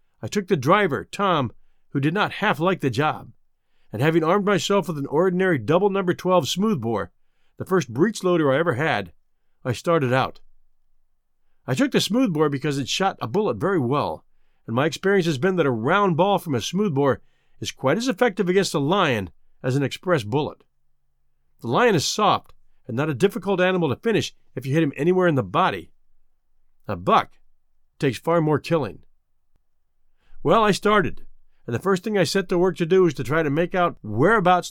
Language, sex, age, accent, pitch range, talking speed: English, male, 50-69, American, 130-190 Hz, 195 wpm